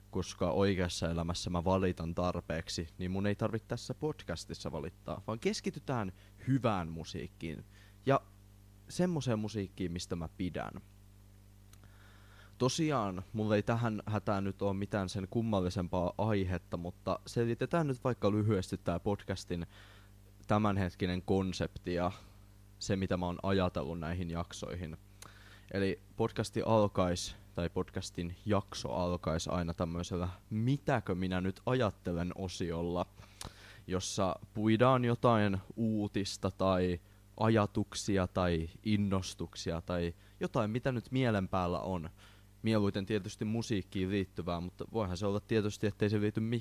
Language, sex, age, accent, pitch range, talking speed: Finnish, male, 20-39, native, 90-105 Hz, 120 wpm